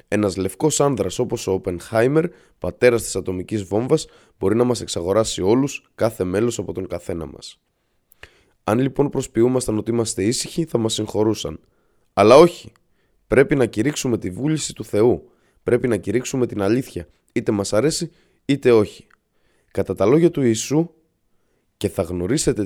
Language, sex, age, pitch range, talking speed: Greek, male, 20-39, 95-135 Hz, 150 wpm